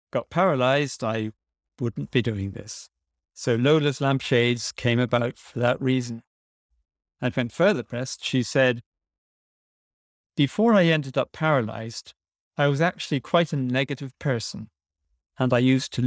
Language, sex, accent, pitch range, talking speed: English, male, British, 110-145 Hz, 140 wpm